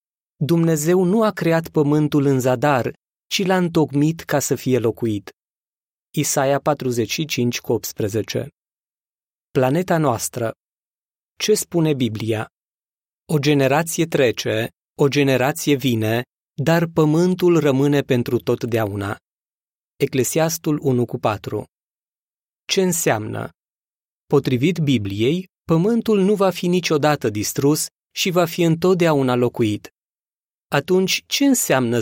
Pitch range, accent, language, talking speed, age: 130-175 Hz, native, Romanian, 95 wpm, 20-39